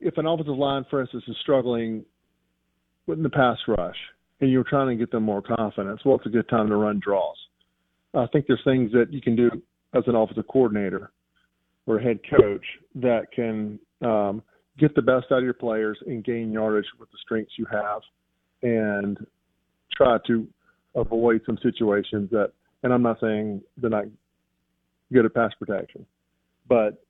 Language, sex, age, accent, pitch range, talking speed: English, male, 40-59, American, 100-125 Hz, 175 wpm